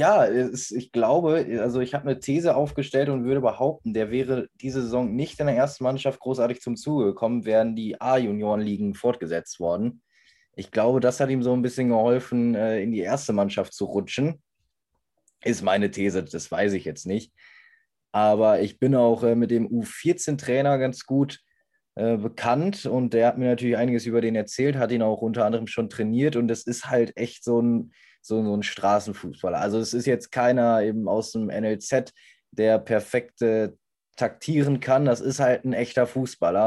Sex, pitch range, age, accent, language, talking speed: male, 105-125 Hz, 20-39, German, German, 180 wpm